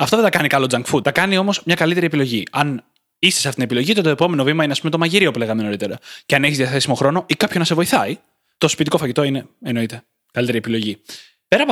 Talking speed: 255 wpm